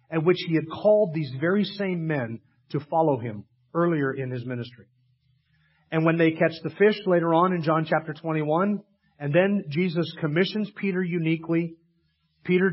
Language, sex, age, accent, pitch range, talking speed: English, male, 40-59, American, 140-180 Hz, 165 wpm